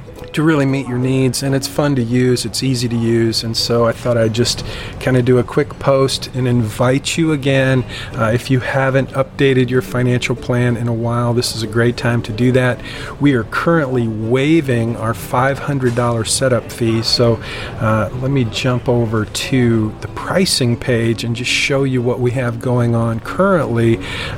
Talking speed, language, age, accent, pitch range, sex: 190 wpm, English, 40-59, American, 115-130 Hz, male